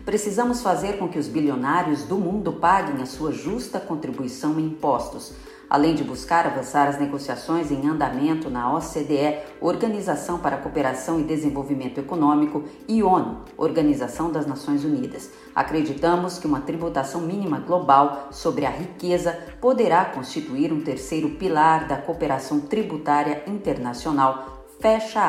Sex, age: female, 40-59